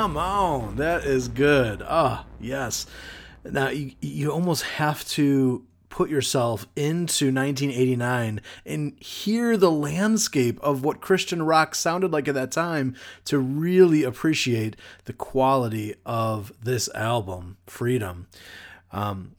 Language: English